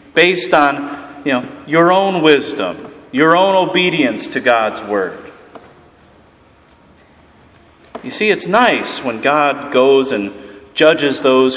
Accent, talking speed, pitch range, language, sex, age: American, 120 wpm, 100-135 Hz, English, male, 30-49